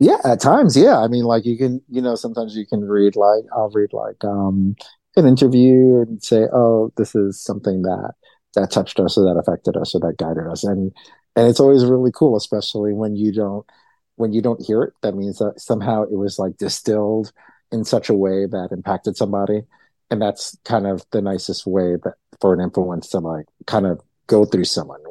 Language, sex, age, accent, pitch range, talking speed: English, male, 50-69, American, 95-110 Hz, 210 wpm